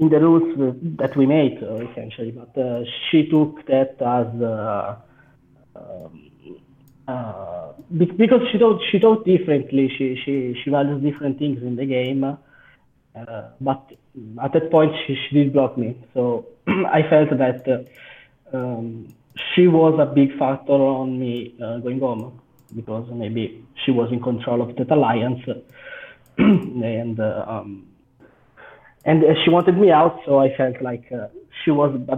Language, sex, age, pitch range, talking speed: English, male, 20-39, 120-150 Hz, 155 wpm